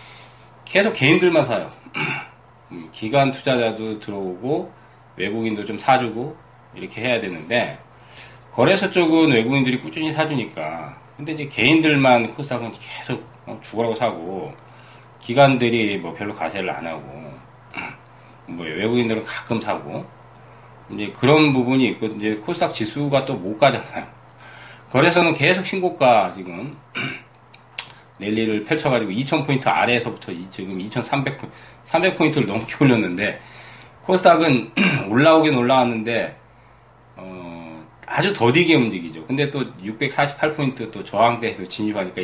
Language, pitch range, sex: Korean, 110-145 Hz, male